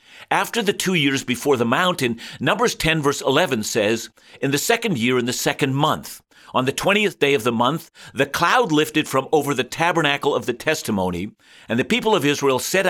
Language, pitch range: English, 115-165 Hz